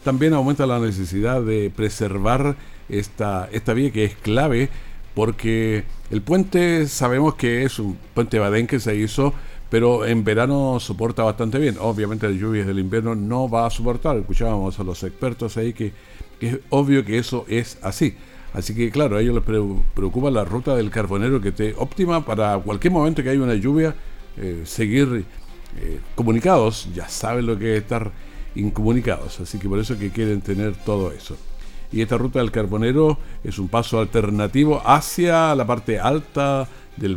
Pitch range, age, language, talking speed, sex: 105-125 Hz, 50-69, Spanish, 175 wpm, male